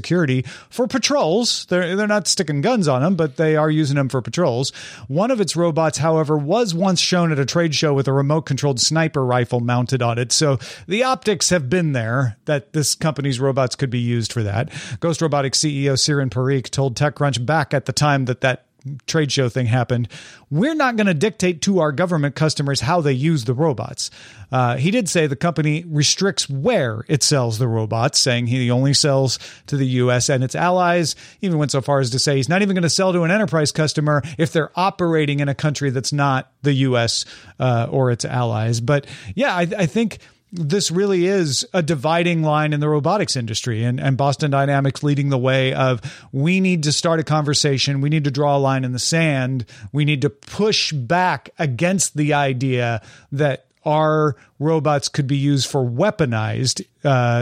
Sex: male